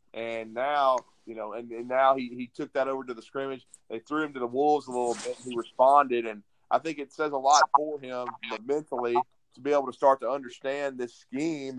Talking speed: 235 wpm